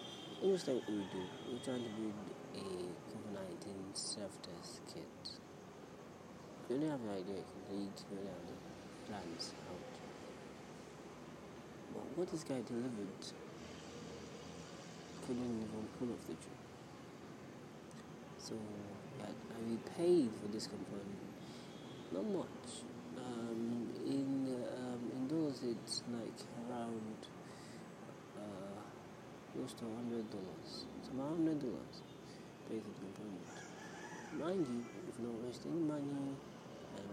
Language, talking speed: English, 110 wpm